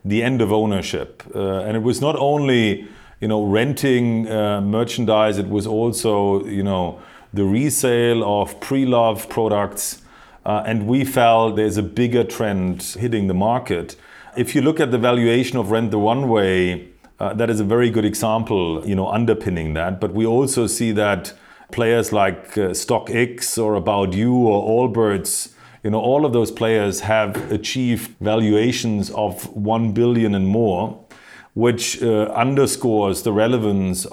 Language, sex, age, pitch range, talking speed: English, male, 40-59, 100-115 Hz, 160 wpm